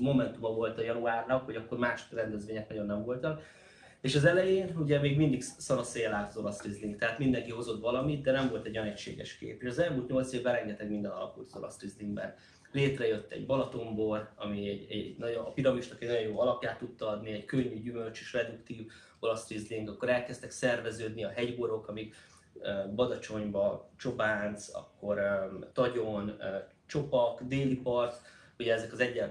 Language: Hungarian